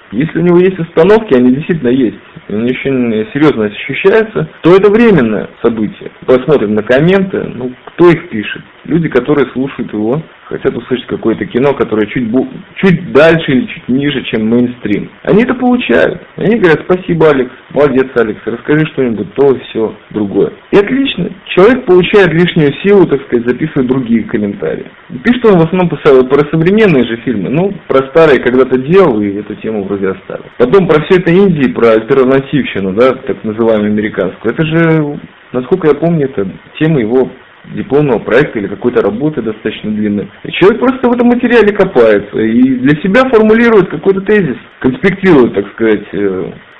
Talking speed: 165 wpm